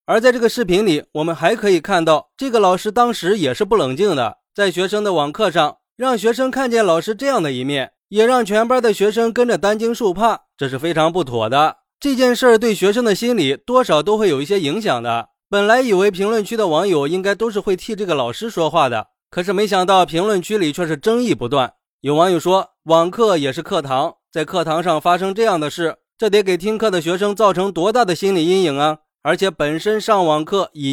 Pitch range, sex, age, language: 155-215 Hz, male, 20-39, Chinese